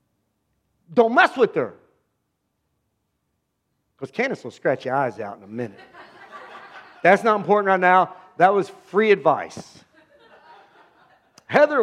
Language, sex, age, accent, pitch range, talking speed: English, male, 50-69, American, 170-275 Hz, 120 wpm